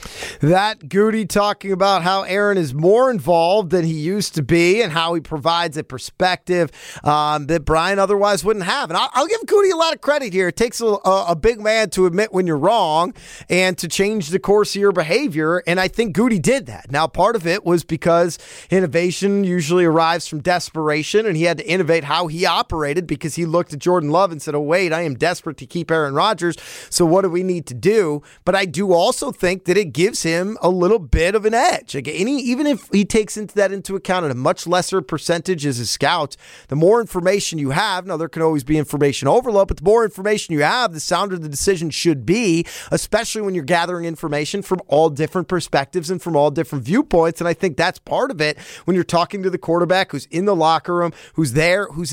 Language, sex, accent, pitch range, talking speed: English, male, American, 160-200 Hz, 225 wpm